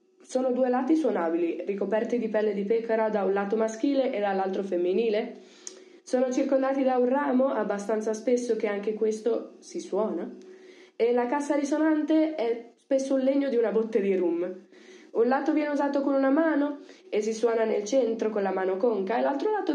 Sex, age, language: female, 20-39, Italian